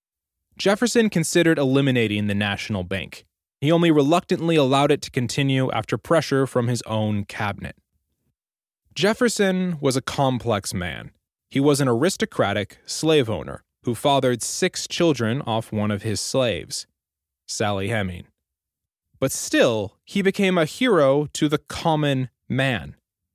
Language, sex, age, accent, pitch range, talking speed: English, male, 20-39, American, 105-160 Hz, 130 wpm